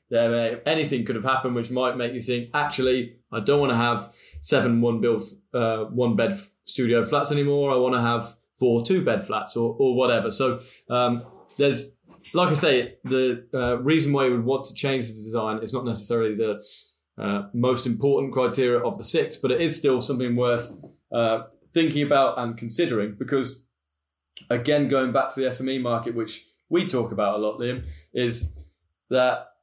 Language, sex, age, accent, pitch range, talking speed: English, male, 20-39, British, 115-135 Hz, 180 wpm